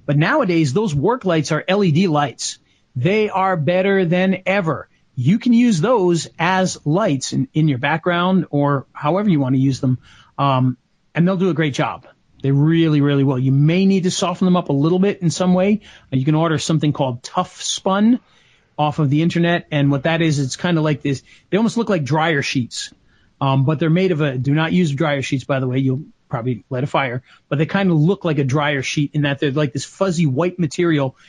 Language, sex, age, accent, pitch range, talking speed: English, male, 40-59, American, 140-175 Hz, 220 wpm